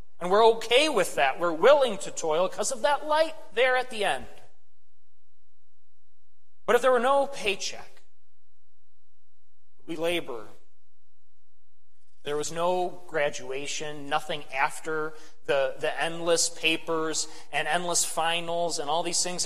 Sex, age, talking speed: male, 30-49, 130 wpm